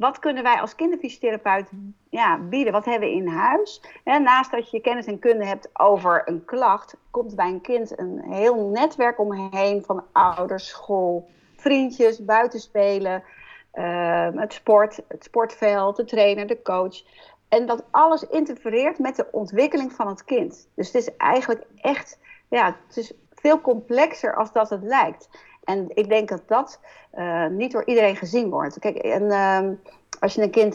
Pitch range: 190-240 Hz